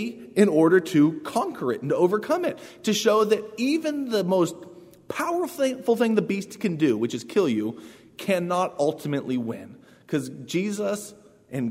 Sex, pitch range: male, 160-235 Hz